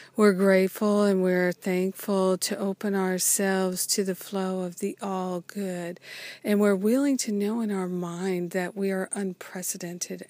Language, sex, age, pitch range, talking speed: English, female, 50-69, 180-200 Hz, 155 wpm